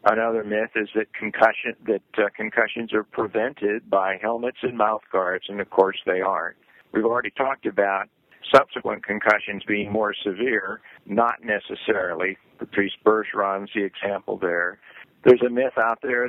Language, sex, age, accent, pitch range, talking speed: English, male, 60-79, American, 100-115 Hz, 155 wpm